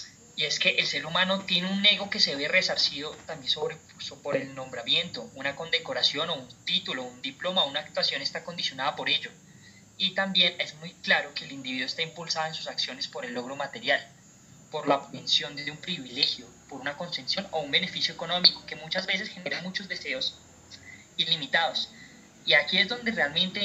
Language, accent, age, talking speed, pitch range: Spanish, Colombian, 20-39, 185 wpm, 145-190 Hz